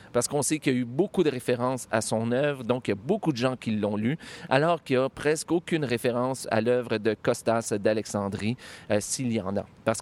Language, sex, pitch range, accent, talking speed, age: French, male, 110-145 Hz, Canadian, 245 wpm, 40-59